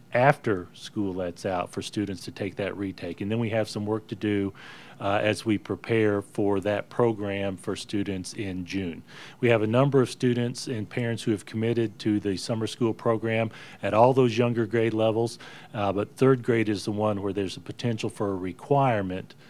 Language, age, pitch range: English, 40-59, 100-120 Hz